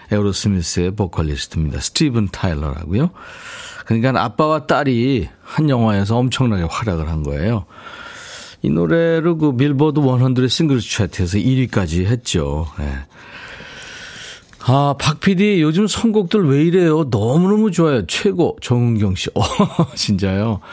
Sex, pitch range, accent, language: male, 110-165 Hz, native, Korean